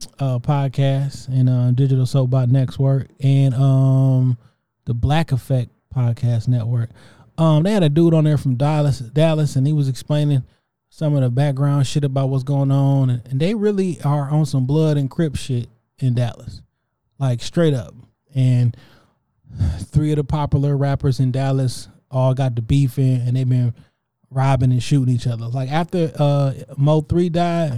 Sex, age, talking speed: male, 20-39, 180 wpm